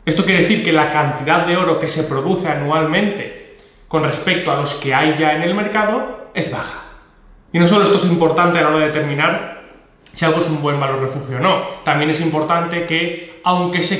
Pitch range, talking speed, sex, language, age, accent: 160-200 Hz, 215 wpm, male, Spanish, 20-39, Spanish